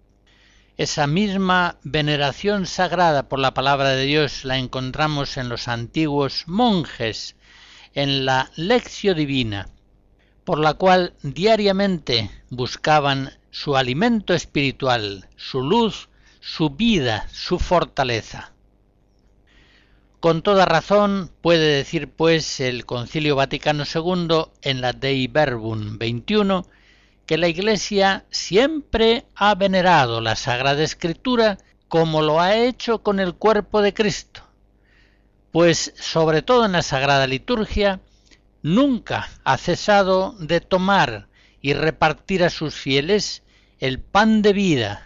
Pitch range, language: 125-185 Hz, Spanish